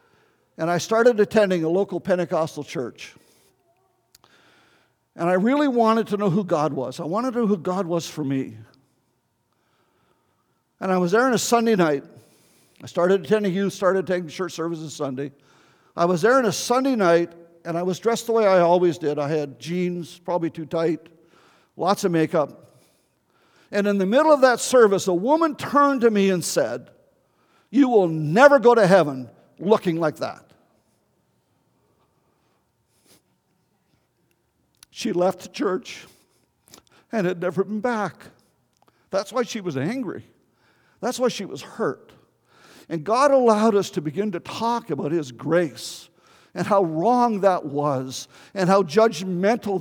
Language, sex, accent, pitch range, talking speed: English, male, American, 165-225 Hz, 155 wpm